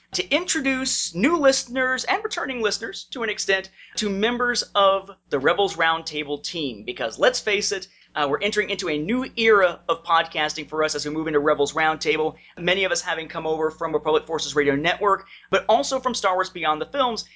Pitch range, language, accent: 165-245 Hz, English, American